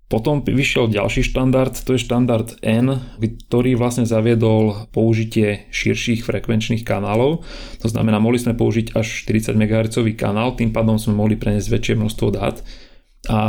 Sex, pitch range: male, 110-120 Hz